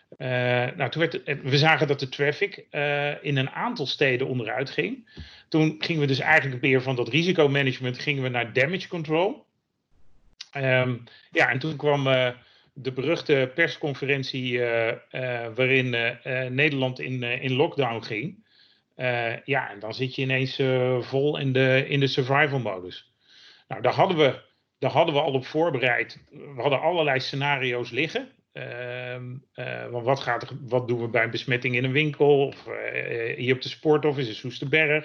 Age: 40-59